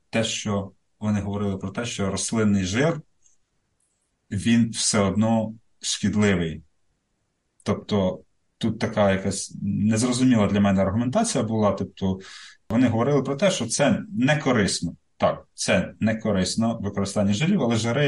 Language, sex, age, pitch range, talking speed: Ukrainian, male, 30-49, 95-115 Hz, 125 wpm